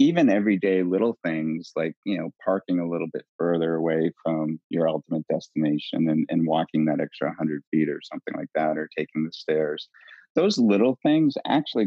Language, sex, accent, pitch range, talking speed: English, male, American, 80-95 Hz, 180 wpm